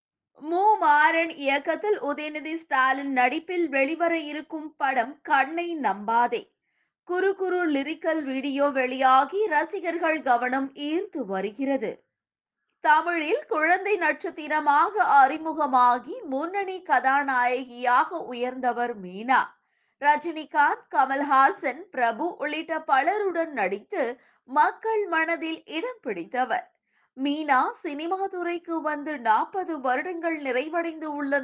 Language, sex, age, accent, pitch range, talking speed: Tamil, female, 20-39, native, 270-345 Hz, 85 wpm